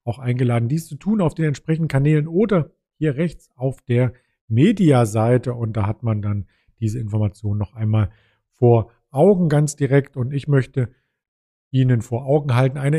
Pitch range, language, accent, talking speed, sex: 120-150 Hz, German, German, 165 wpm, male